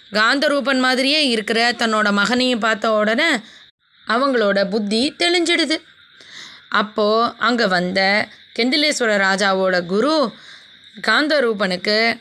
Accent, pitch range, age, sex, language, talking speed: native, 205-265 Hz, 20-39, female, Tamil, 80 wpm